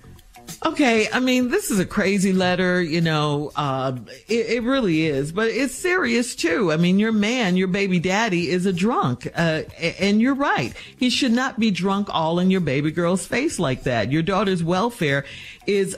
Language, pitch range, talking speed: English, 155-225 Hz, 190 wpm